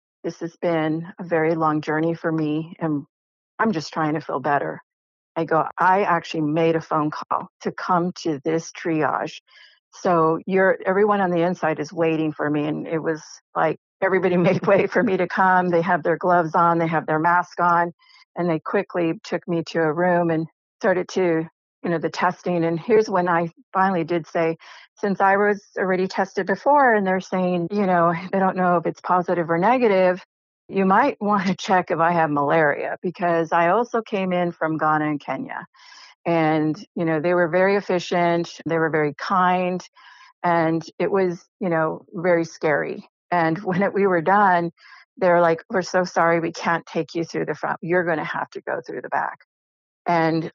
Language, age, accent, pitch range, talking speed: English, 50-69, American, 160-185 Hz, 195 wpm